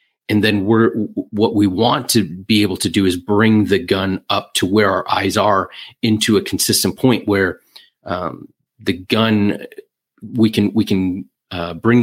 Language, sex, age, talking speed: English, male, 30-49, 175 wpm